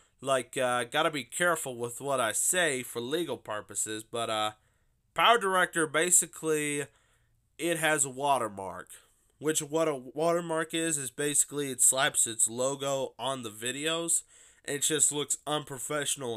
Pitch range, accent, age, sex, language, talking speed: 115-155 Hz, American, 20-39, male, English, 140 wpm